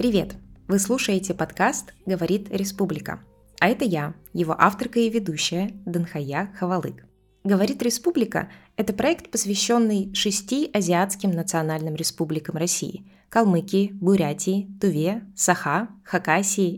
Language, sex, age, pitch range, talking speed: Russian, female, 20-39, 170-215 Hz, 115 wpm